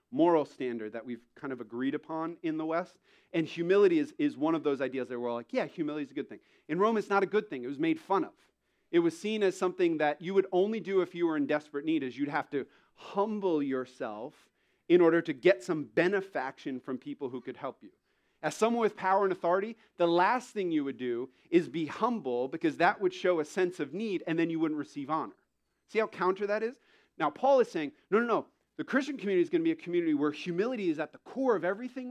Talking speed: 250 wpm